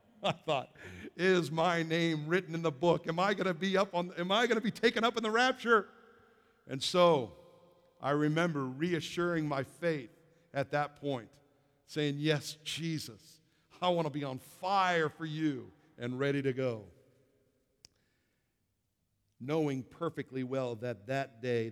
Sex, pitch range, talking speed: male, 125-175 Hz, 140 wpm